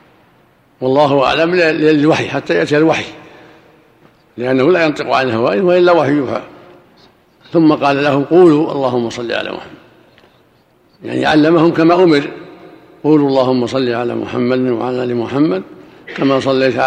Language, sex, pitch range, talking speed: Arabic, male, 125-140 Hz, 125 wpm